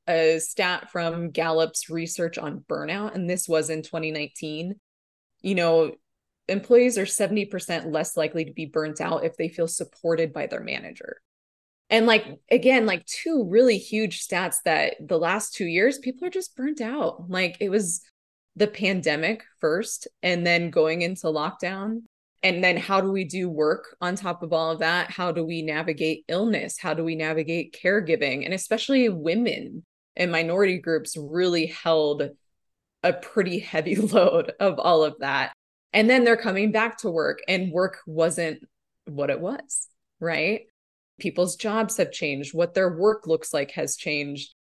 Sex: female